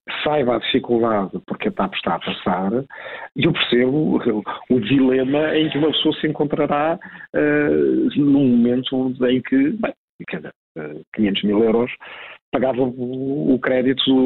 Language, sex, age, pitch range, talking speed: Portuguese, male, 50-69, 120-155 Hz, 150 wpm